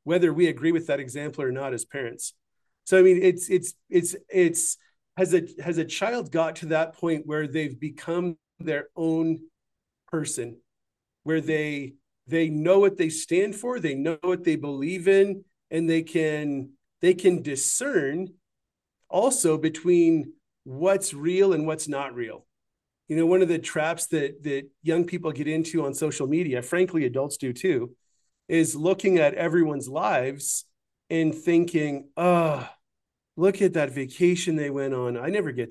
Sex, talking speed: male, 165 wpm